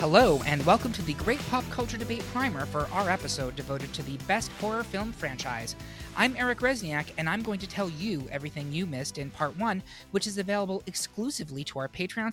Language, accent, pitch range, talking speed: English, American, 140-205 Hz, 205 wpm